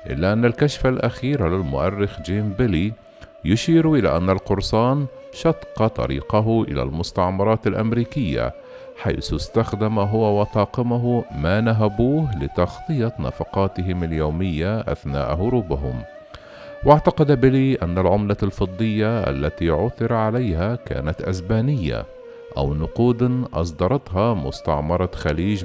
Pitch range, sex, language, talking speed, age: 90-125 Hz, male, Arabic, 100 wpm, 50-69